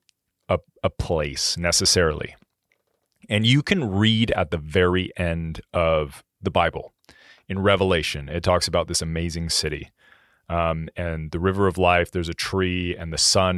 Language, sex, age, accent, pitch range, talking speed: English, male, 30-49, American, 85-100 Hz, 150 wpm